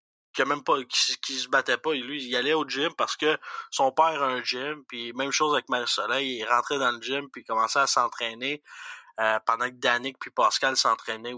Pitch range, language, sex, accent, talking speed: 125-150 Hz, French, male, Canadian, 225 wpm